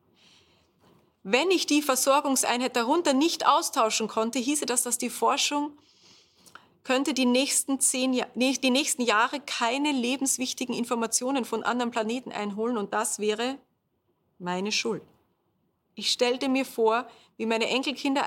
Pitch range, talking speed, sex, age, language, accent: 225-270 Hz, 130 wpm, female, 30-49, German, German